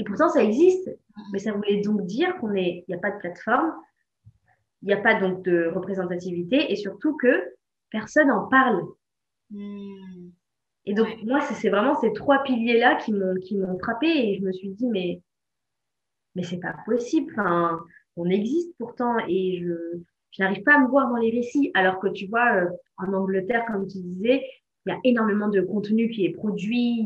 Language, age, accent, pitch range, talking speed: French, 20-39, French, 185-240 Hz, 185 wpm